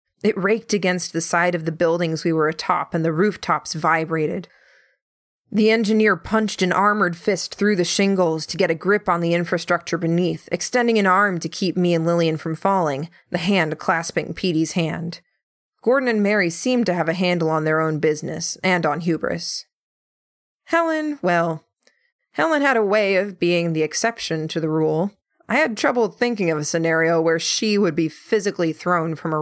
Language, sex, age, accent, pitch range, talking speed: English, female, 20-39, American, 165-210 Hz, 185 wpm